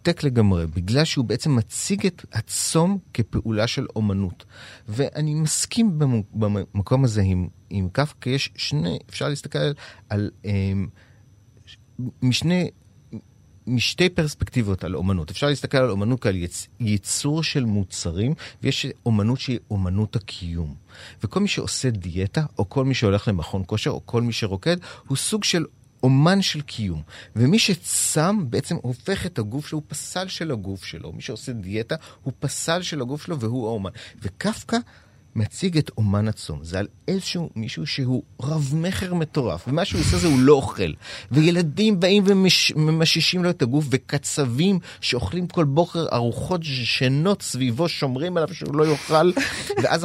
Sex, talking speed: male, 150 wpm